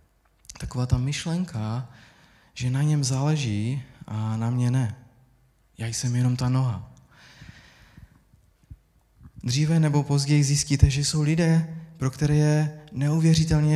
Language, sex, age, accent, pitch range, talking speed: Czech, male, 20-39, native, 120-140 Hz, 120 wpm